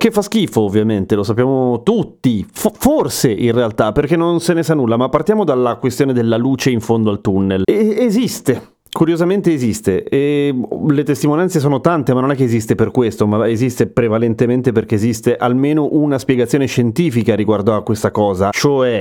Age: 30-49